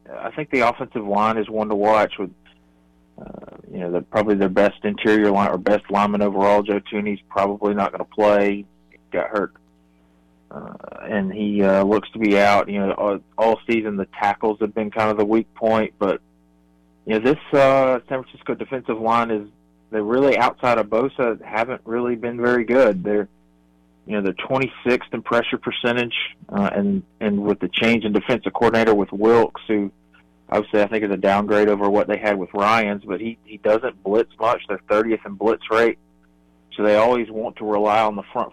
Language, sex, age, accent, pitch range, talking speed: English, male, 30-49, American, 95-110 Hz, 195 wpm